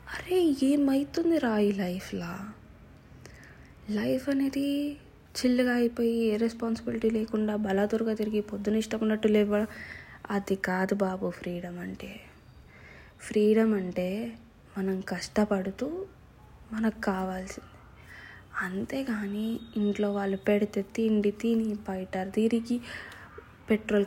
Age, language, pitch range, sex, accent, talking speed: 20-39, Telugu, 200-235 Hz, female, native, 85 wpm